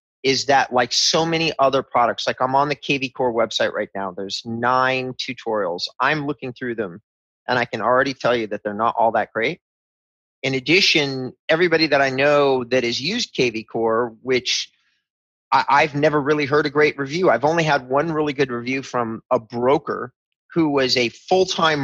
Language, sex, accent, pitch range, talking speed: English, male, American, 125-155 Hz, 190 wpm